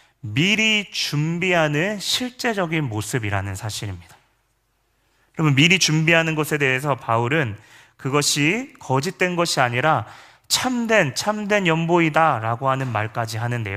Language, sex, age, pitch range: Korean, male, 30-49, 115-155 Hz